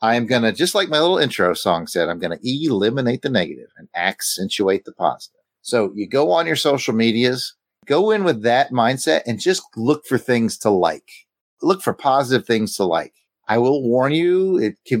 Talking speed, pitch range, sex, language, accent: 210 wpm, 110-140 Hz, male, English, American